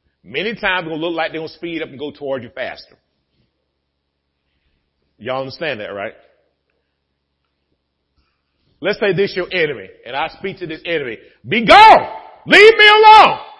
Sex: male